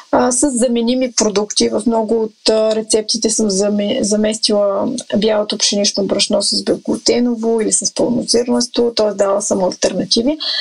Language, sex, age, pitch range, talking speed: Bulgarian, female, 30-49, 220-265 Hz, 120 wpm